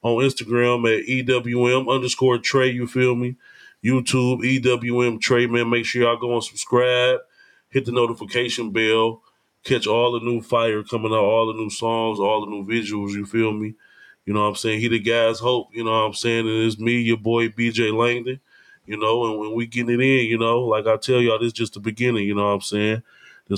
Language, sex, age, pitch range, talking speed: English, male, 20-39, 100-115 Hz, 220 wpm